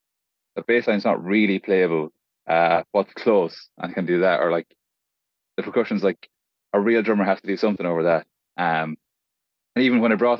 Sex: male